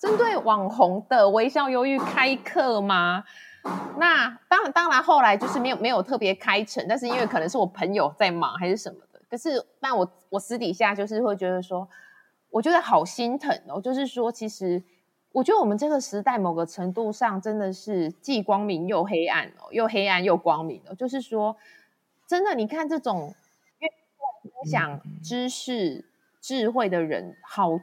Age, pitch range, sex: 20-39, 190-265 Hz, female